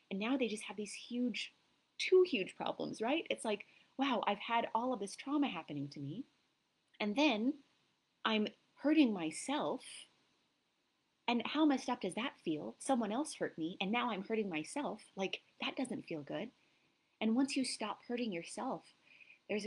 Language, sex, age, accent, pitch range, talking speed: English, female, 30-49, American, 200-265 Hz, 170 wpm